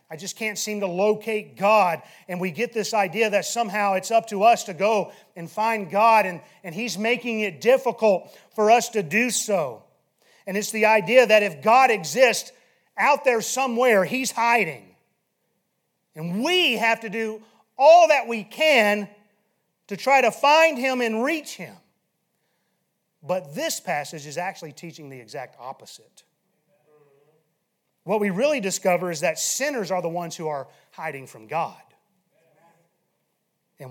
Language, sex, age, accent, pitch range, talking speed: English, male, 30-49, American, 165-230 Hz, 160 wpm